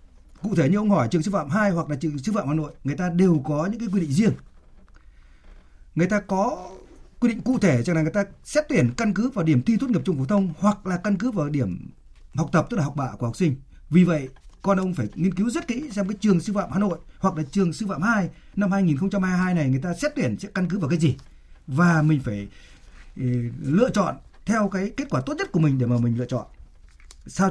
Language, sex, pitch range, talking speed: Vietnamese, male, 135-200 Hz, 255 wpm